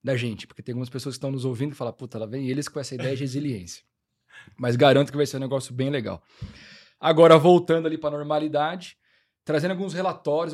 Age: 20-39